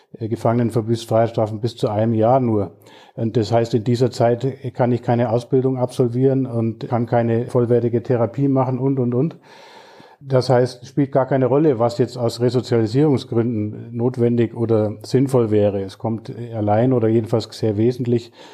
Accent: German